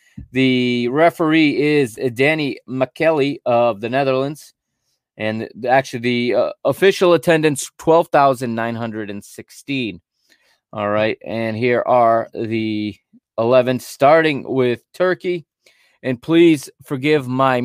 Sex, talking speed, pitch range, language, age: male, 100 wpm, 115-145 Hz, English, 30-49